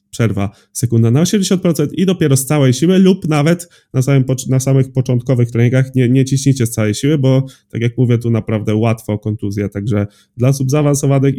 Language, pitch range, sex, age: Polish, 115-140 Hz, male, 20-39